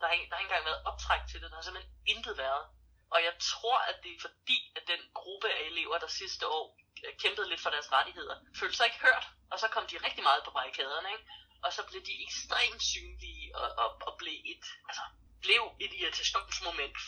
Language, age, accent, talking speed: Danish, 20-39, native, 220 wpm